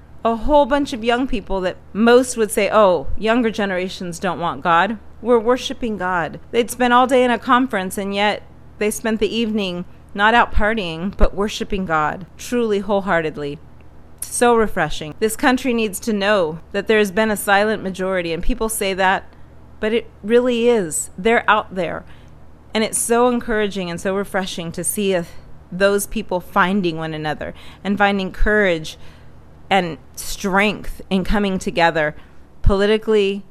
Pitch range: 175-220 Hz